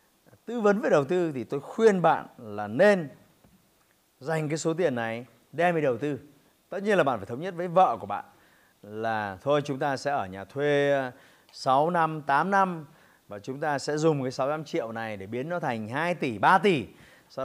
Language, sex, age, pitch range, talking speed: Vietnamese, male, 20-39, 130-185 Hz, 215 wpm